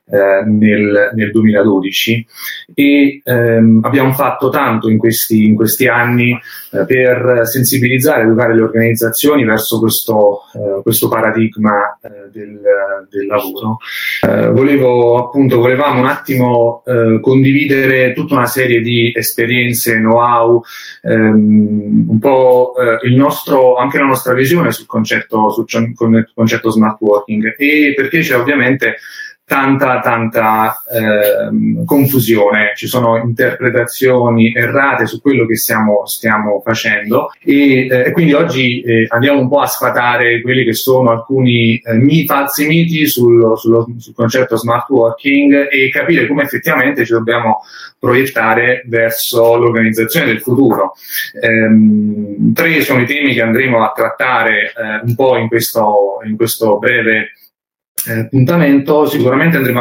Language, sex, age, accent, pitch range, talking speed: Italian, male, 30-49, native, 110-130 Hz, 130 wpm